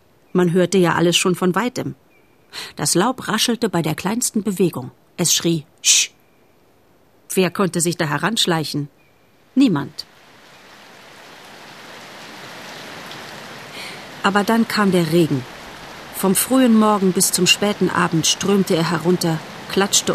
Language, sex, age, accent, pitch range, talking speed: German, female, 40-59, German, 160-200 Hz, 115 wpm